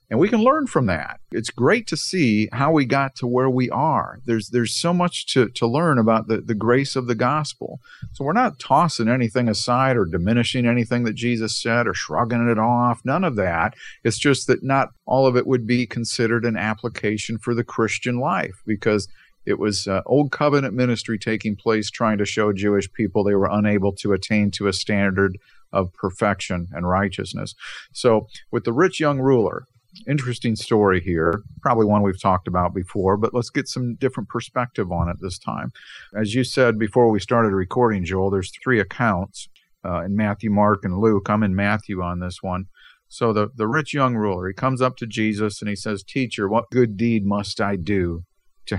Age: 50-69